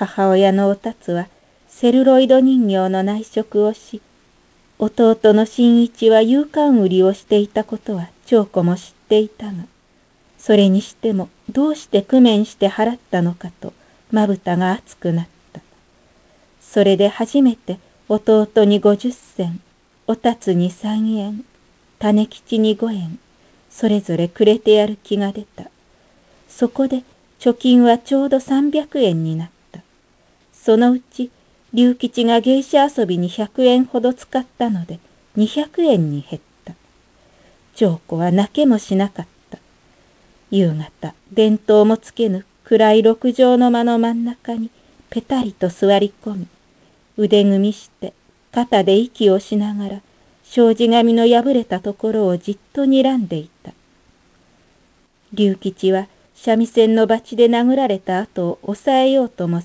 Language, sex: Japanese, female